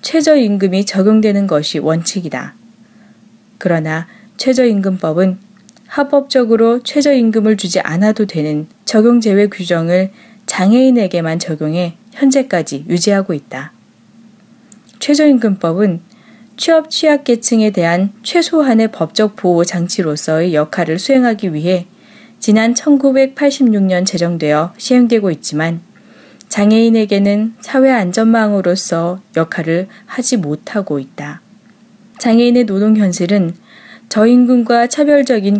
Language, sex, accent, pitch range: Korean, female, native, 185-235 Hz